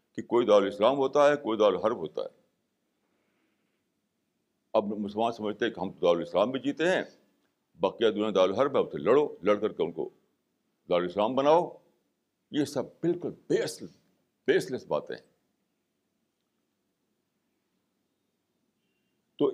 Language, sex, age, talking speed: Urdu, male, 60-79, 125 wpm